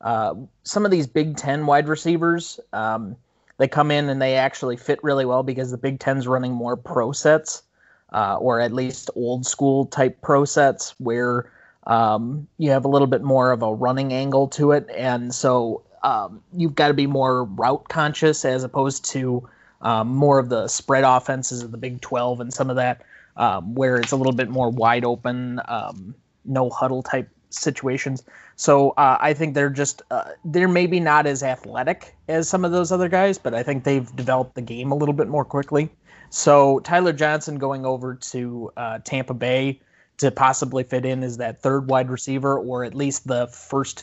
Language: English